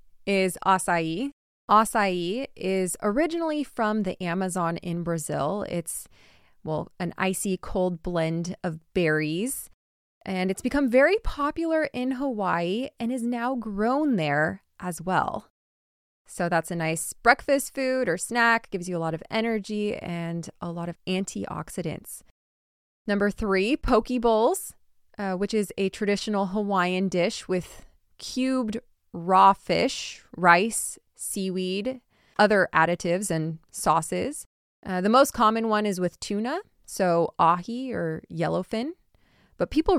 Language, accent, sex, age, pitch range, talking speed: English, American, female, 20-39, 175-240 Hz, 130 wpm